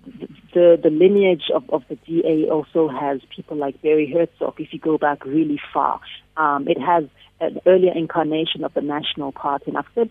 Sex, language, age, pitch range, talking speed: female, English, 40-59, 150-180 Hz, 190 wpm